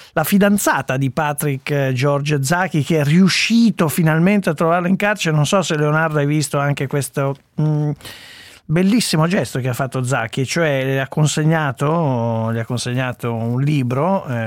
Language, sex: Italian, male